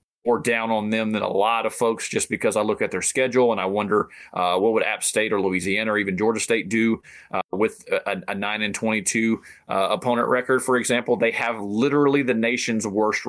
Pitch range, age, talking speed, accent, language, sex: 110-135 Hz, 30-49, 220 wpm, American, English, male